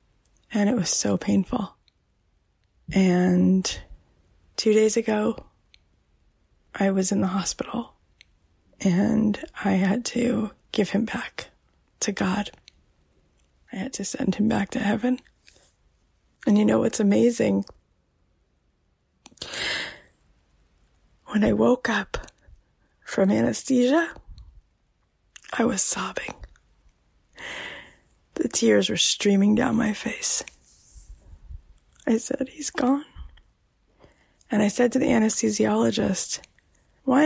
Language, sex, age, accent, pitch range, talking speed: English, female, 20-39, American, 180-250 Hz, 100 wpm